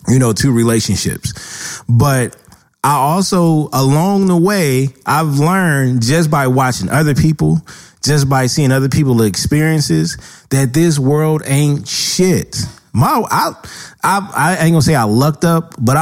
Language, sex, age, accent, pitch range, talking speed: English, male, 20-39, American, 125-165 Hz, 145 wpm